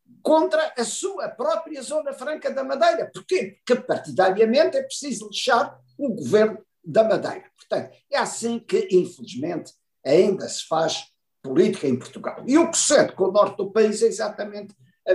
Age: 50-69